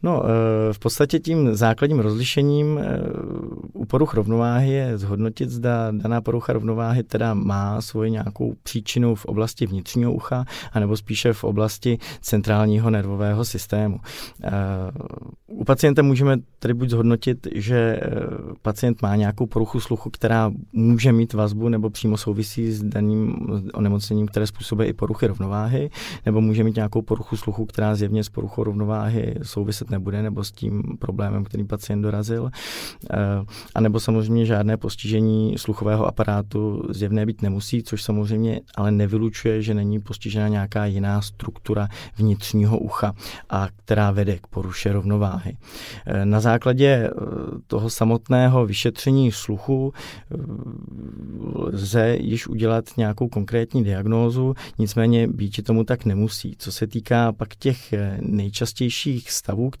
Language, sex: Czech, male